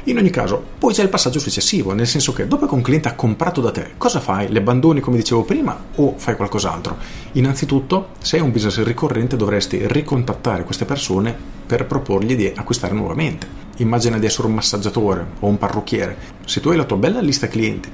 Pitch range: 100-135 Hz